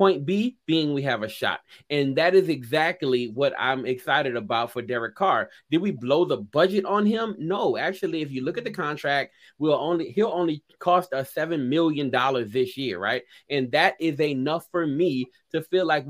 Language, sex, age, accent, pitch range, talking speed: English, male, 30-49, American, 125-165 Hz, 200 wpm